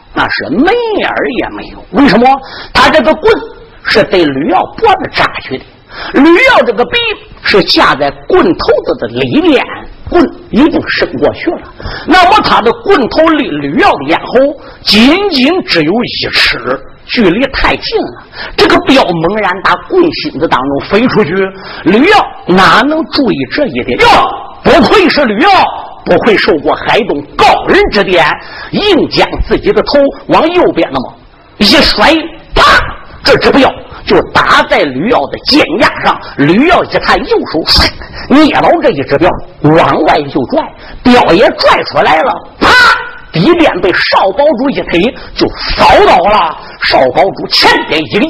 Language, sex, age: Chinese, male, 50-69